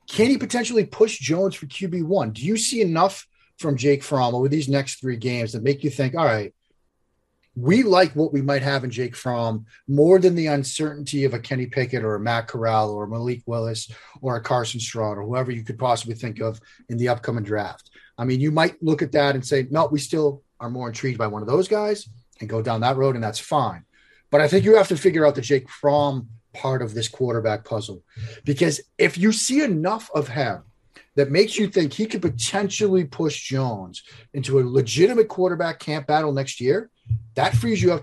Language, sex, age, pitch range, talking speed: English, male, 30-49, 115-155 Hz, 220 wpm